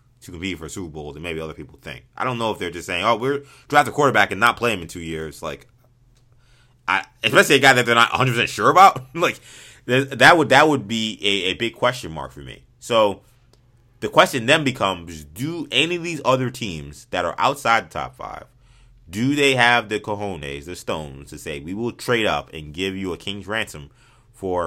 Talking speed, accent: 220 wpm, American